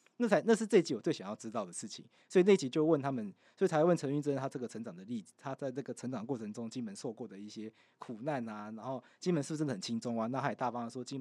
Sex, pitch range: male, 130-185 Hz